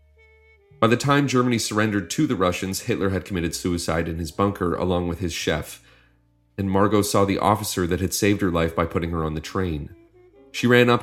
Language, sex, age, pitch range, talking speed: English, male, 30-49, 85-105 Hz, 205 wpm